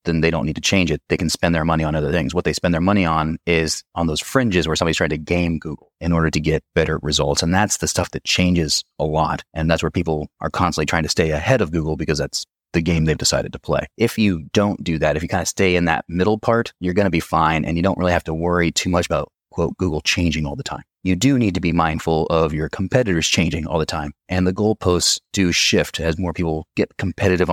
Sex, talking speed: male, 270 wpm